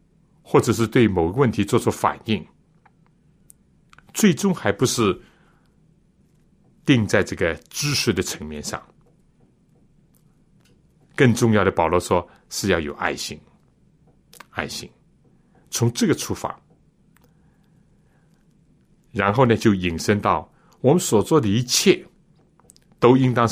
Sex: male